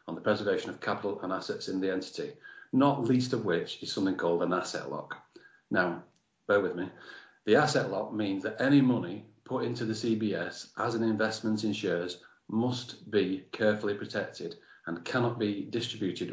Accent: British